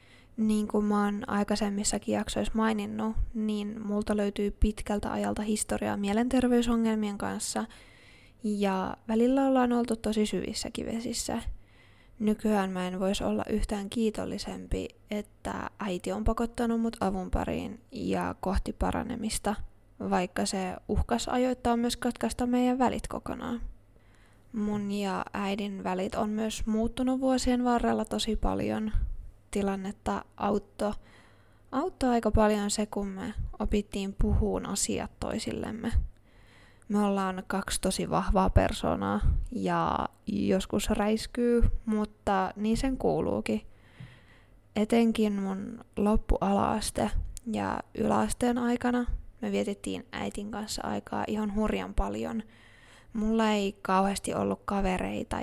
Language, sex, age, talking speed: Finnish, female, 10-29, 110 wpm